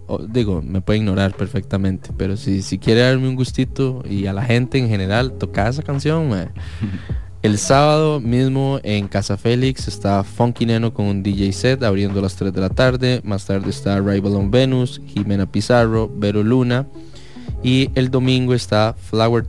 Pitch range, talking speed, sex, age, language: 100-115 Hz, 175 wpm, male, 20-39, English